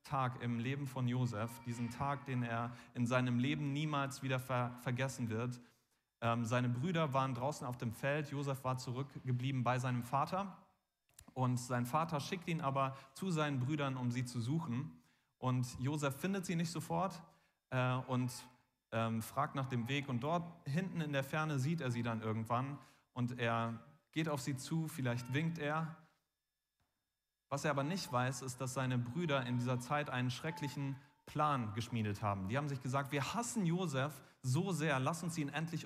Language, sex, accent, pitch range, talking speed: German, male, German, 120-150 Hz, 175 wpm